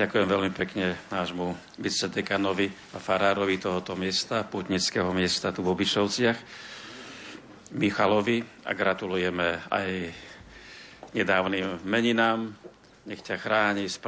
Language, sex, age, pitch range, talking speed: Slovak, male, 50-69, 90-100 Hz, 100 wpm